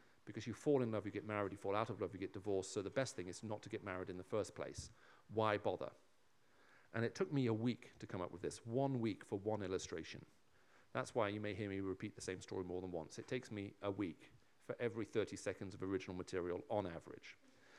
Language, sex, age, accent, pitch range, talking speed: English, male, 40-59, British, 100-125 Hz, 250 wpm